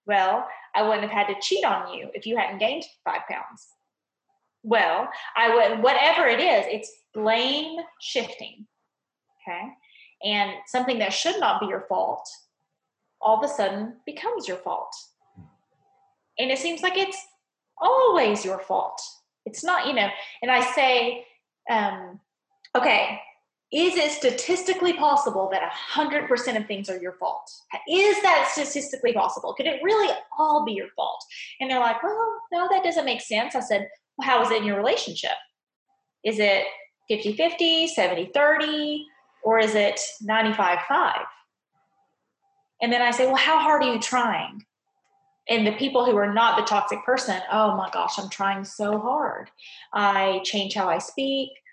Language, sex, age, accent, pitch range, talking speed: English, female, 20-39, American, 215-340 Hz, 160 wpm